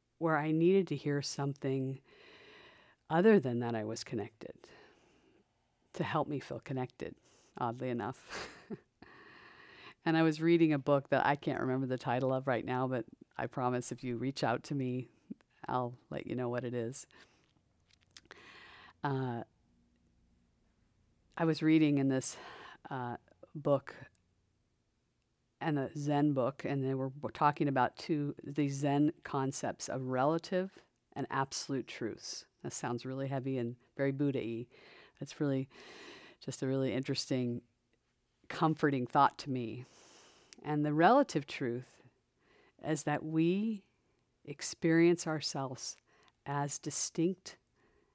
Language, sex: English, female